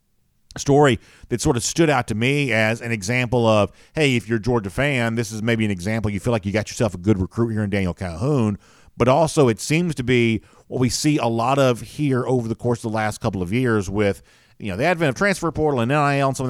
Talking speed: 260 wpm